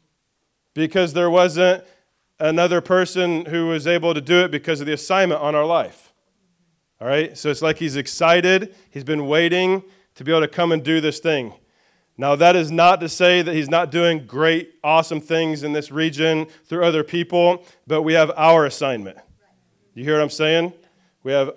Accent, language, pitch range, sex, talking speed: American, English, 145-175 Hz, male, 190 wpm